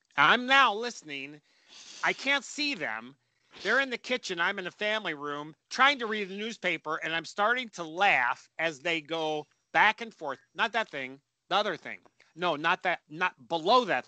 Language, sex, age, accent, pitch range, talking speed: English, male, 40-59, American, 155-240 Hz, 190 wpm